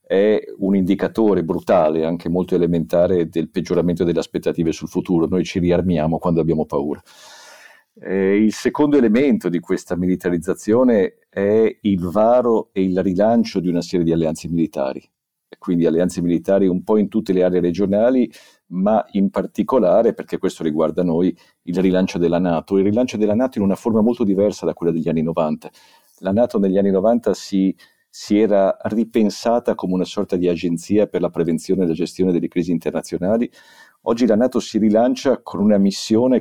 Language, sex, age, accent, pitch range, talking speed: Italian, male, 50-69, native, 85-110 Hz, 170 wpm